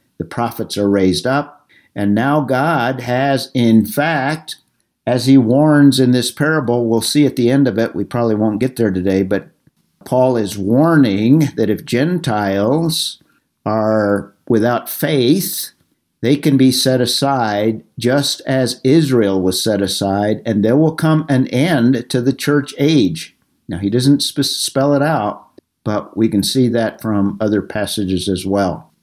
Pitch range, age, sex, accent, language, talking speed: 105-135 Hz, 50-69, male, American, English, 160 wpm